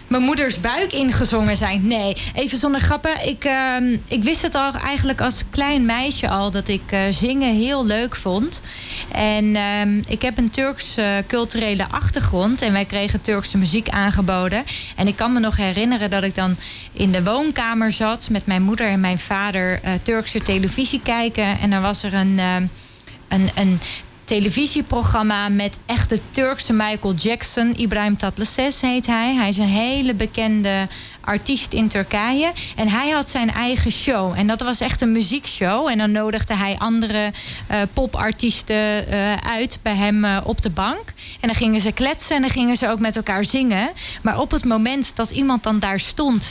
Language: Dutch